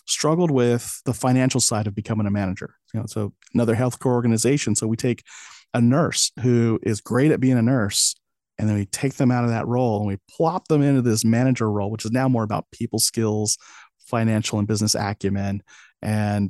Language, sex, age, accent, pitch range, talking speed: English, male, 40-59, American, 105-130 Hz, 205 wpm